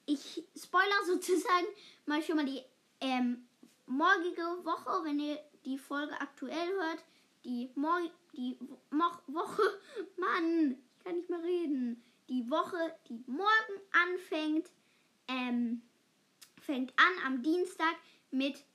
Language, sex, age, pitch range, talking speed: German, female, 10-29, 265-340 Hz, 120 wpm